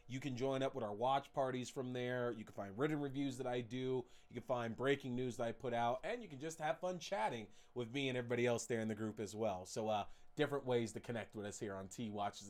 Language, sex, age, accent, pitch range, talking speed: English, male, 30-49, American, 125-170 Hz, 275 wpm